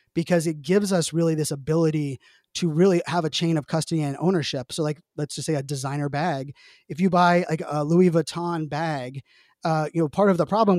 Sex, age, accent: male, 20-39, American